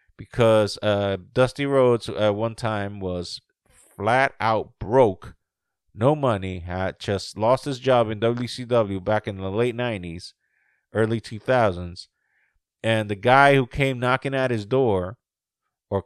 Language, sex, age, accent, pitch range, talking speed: English, male, 30-49, American, 100-135 Hz, 140 wpm